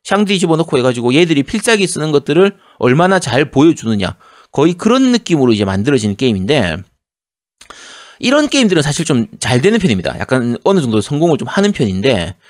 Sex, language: male, Korean